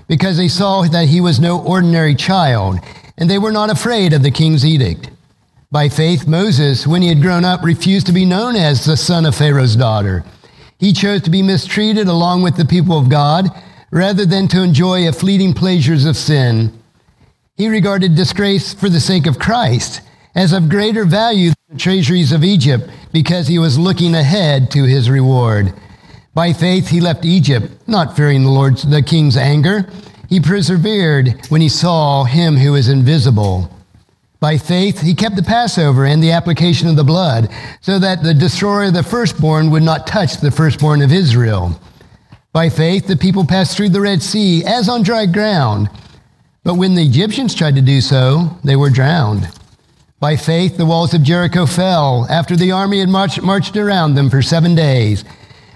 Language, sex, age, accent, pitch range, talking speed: English, male, 50-69, American, 140-185 Hz, 185 wpm